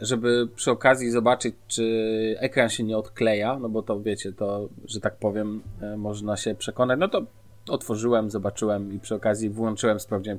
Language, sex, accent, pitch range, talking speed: Polish, male, native, 105-125 Hz, 170 wpm